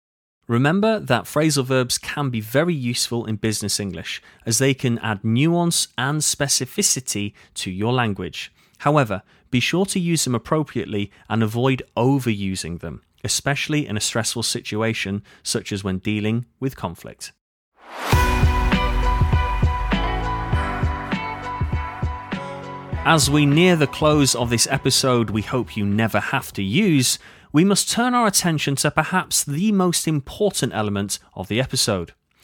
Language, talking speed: English, 135 wpm